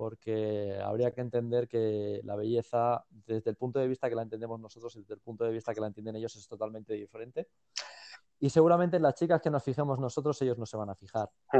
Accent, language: Spanish, Spanish